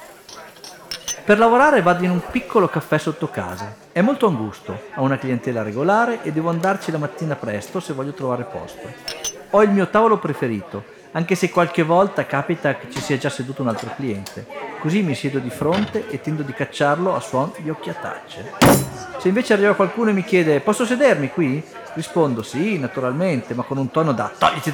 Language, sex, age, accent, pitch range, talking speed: Italian, male, 40-59, native, 130-195 Hz, 185 wpm